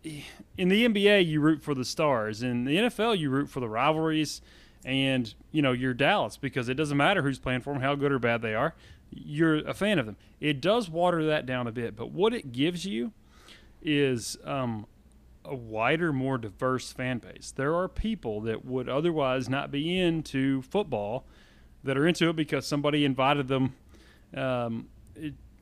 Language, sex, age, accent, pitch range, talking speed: English, male, 30-49, American, 115-155 Hz, 185 wpm